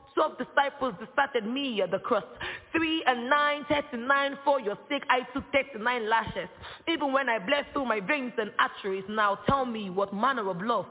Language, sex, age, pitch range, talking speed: English, female, 20-39, 215-280 Hz, 185 wpm